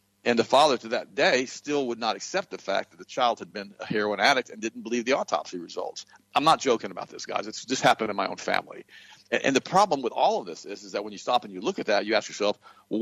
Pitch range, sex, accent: 110-150 Hz, male, American